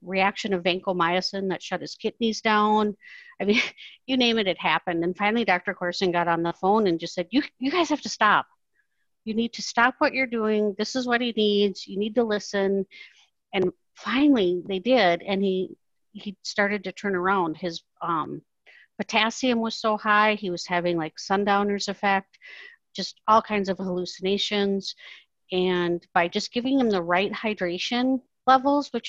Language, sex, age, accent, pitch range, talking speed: English, female, 50-69, American, 180-225 Hz, 175 wpm